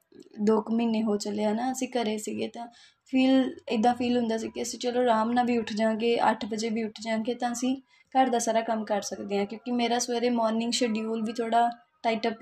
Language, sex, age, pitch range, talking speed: Punjabi, female, 20-39, 210-245 Hz, 220 wpm